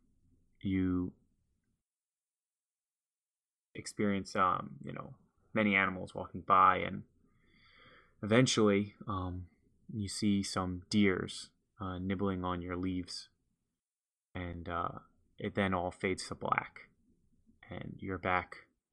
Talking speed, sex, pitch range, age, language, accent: 100 wpm, male, 90-105 Hz, 20-39, English, American